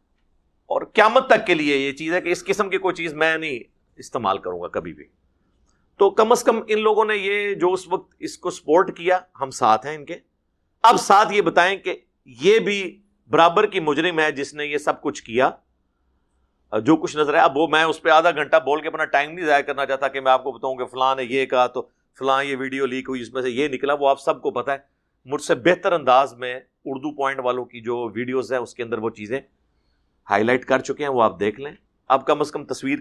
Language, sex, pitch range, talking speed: Urdu, male, 125-175 Hz, 245 wpm